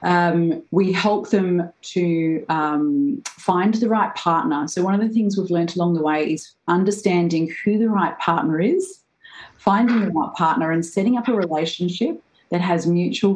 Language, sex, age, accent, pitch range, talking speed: English, female, 30-49, Australian, 165-205 Hz, 175 wpm